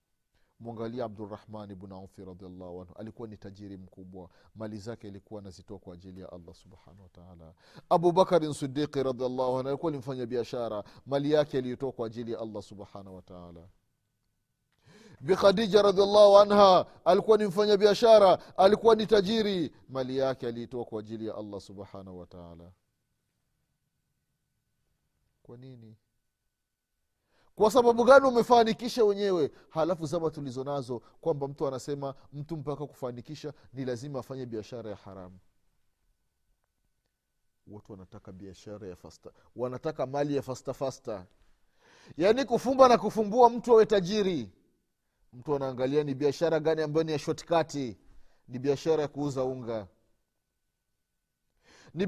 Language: Swahili